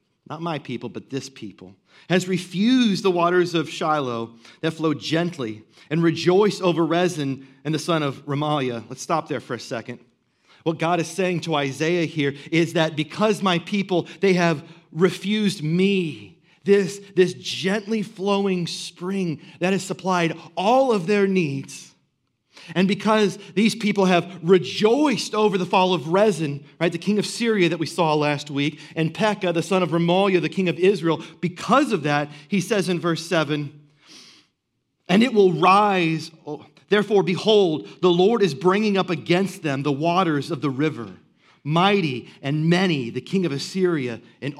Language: English